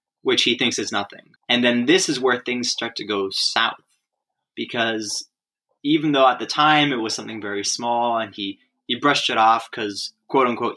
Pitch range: 105-130 Hz